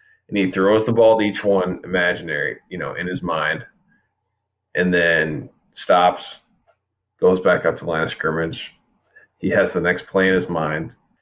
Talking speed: 175 wpm